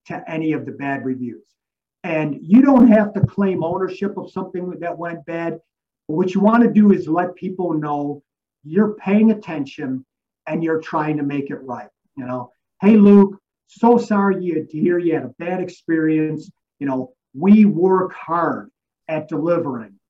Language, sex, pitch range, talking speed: English, male, 150-195 Hz, 170 wpm